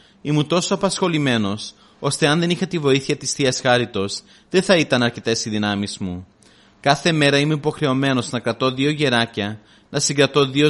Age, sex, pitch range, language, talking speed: 30-49, male, 110-145 Hz, Greek, 170 wpm